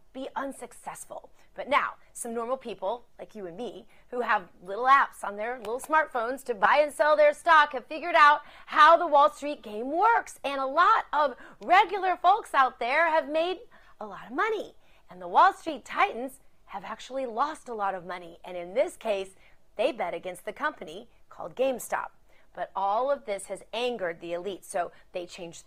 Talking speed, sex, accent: 190 wpm, female, American